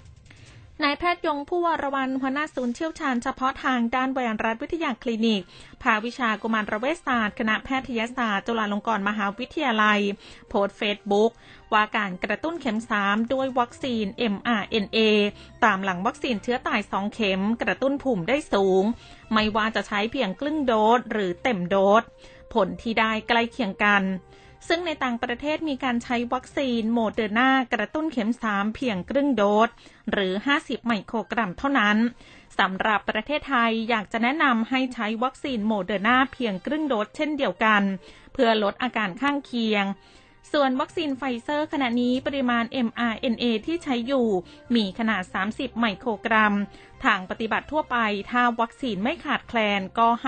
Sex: female